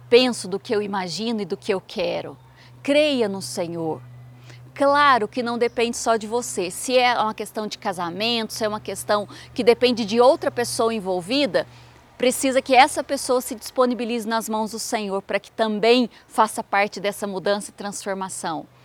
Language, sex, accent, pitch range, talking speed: Portuguese, female, Brazilian, 200-240 Hz, 175 wpm